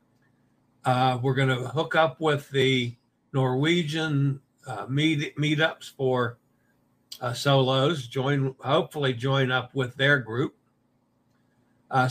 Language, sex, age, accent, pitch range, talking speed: English, male, 60-79, American, 125-150 Hz, 115 wpm